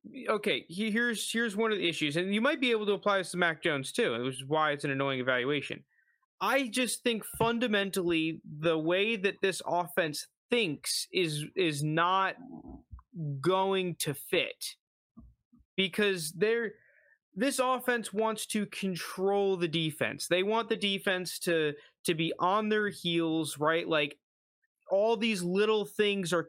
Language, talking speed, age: English, 155 wpm, 20-39